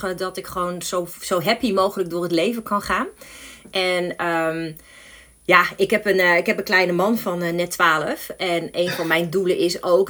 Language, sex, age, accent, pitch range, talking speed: Dutch, female, 30-49, Dutch, 160-190 Hz, 210 wpm